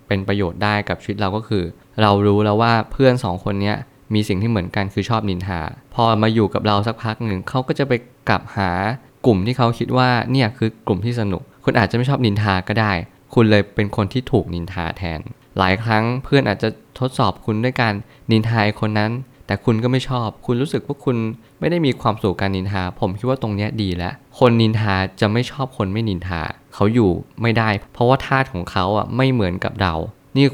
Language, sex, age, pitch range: Thai, male, 20-39, 95-120 Hz